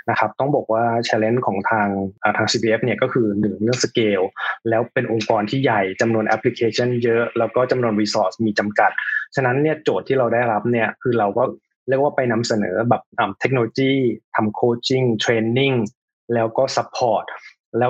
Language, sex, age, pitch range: Thai, male, 20-39, 110-125 Hz